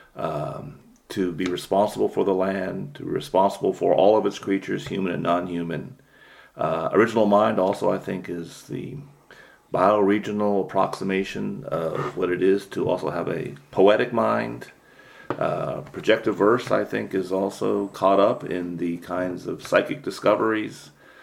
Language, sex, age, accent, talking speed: English, male, 40-59, American, 145 wpm